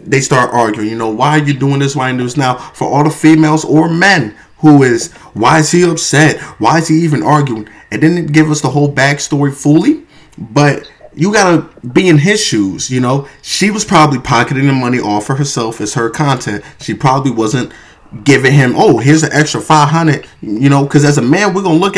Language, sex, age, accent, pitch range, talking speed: English, male, 20-39, American, 125-160 Hz, 220 wpm